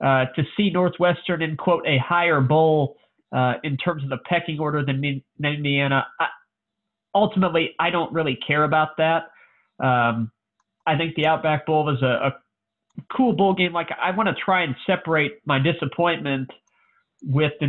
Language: English